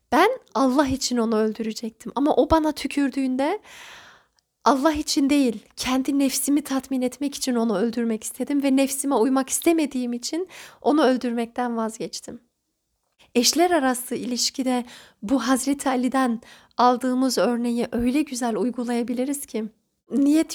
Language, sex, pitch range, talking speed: Turkish, female, 240-285 Hz, 120 wpm